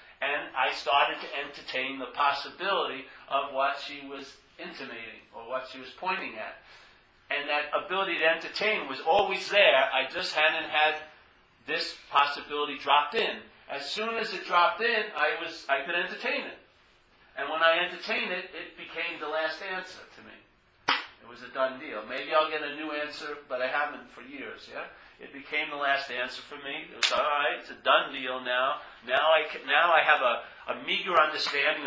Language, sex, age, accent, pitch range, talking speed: English, male, 50-69, American, 145-170 Hz, 190 wpm